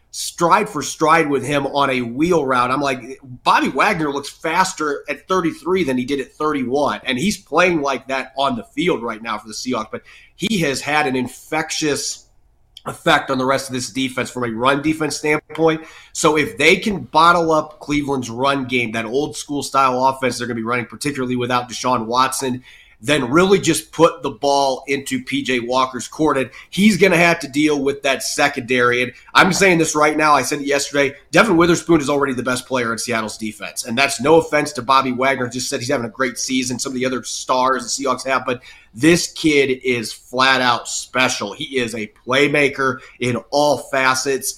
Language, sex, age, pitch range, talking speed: English, male, 30-49, 125-150 Hz, 205 wpm